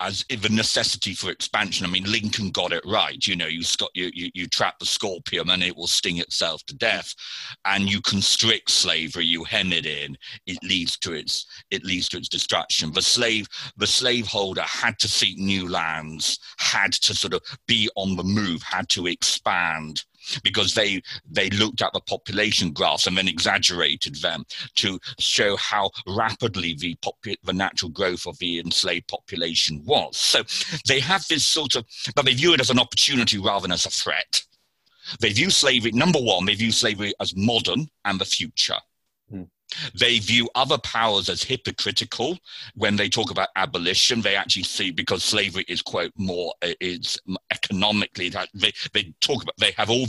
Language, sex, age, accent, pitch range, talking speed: English, male, 40-59, British, 90-110 Hz, 180 wpm